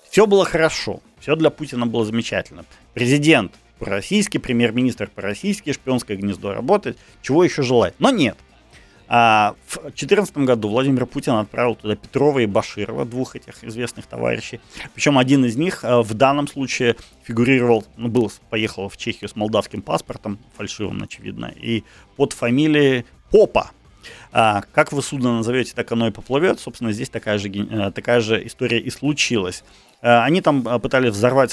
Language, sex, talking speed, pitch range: Ukrainian, male, 145 wpm, 105-130 Hz